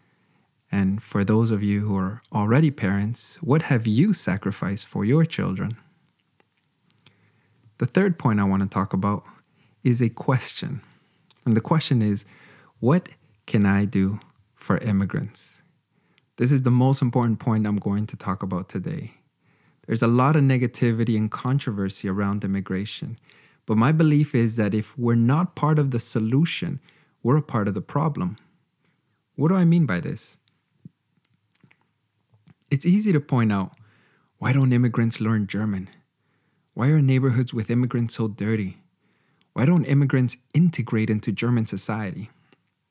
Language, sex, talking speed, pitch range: English, male, 150 wpm, 105-145 Hz